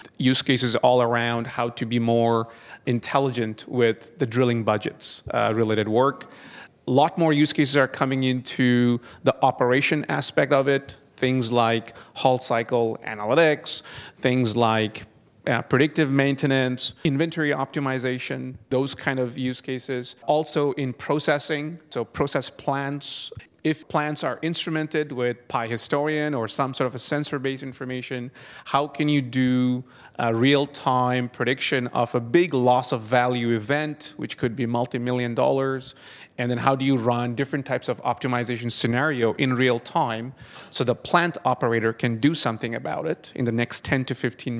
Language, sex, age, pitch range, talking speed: English, male, 30-49, 120-145 Hz, 155 wpm